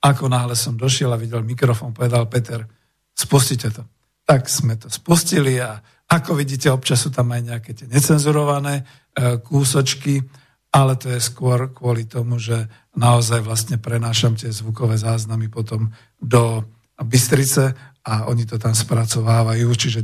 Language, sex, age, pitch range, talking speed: Slovak, male, 50-69, 115-140 Hz, 145 wpm